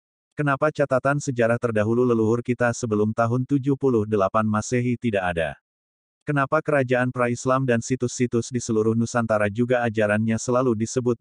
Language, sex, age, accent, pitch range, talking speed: English, male, 30-49, Indonesian, 105-130 Hz, 130 wpm